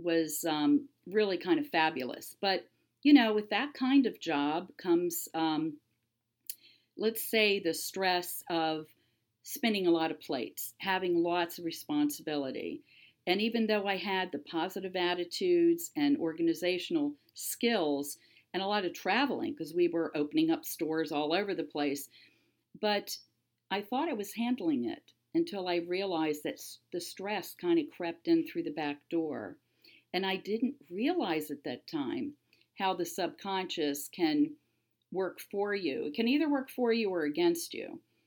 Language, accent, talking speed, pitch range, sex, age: English, American, 155 wpm, 160-270 Hz, female, 50-69